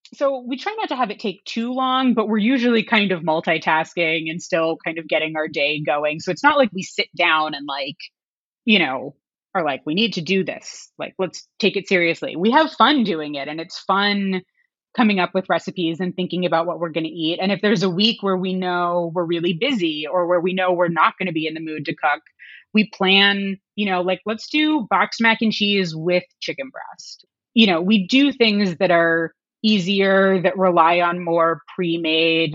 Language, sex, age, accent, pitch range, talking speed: English, female, 20-39, American, 165-215 Hz, 220 wpm